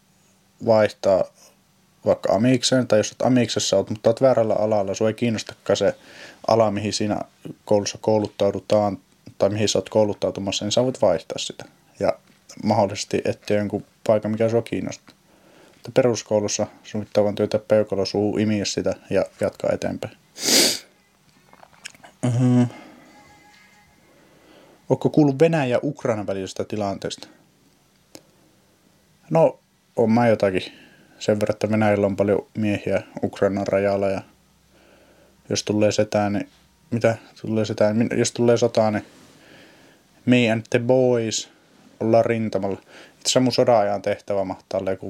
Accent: native